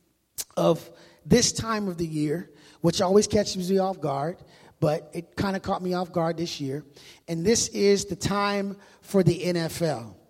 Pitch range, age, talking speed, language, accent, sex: 160-190 Hz, 30-49, 175 wpm, English, American, male